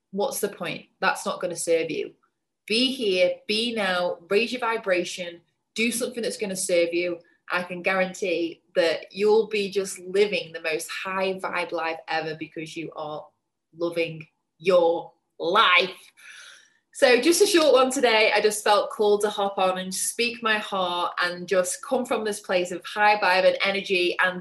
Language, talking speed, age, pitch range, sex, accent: English, 175 wpm, 20-39, 175-245 Hz, female, British